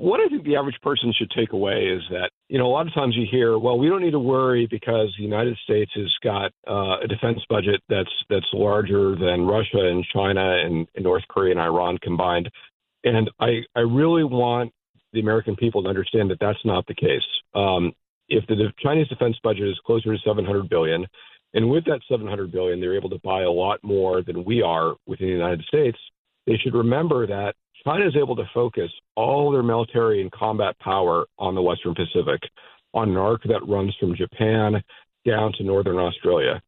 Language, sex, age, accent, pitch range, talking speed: English, male, 50-69, American, 95-120 Hz, 205 wpm